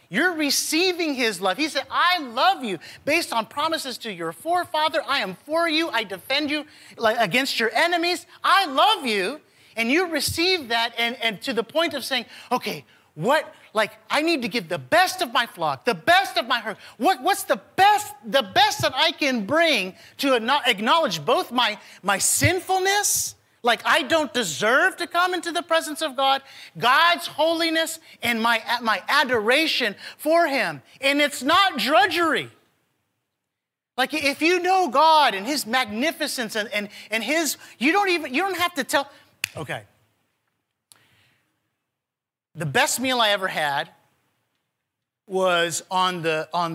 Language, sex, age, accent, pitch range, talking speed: English, male, 30-49, American, 220-330 Hz, 160 wpm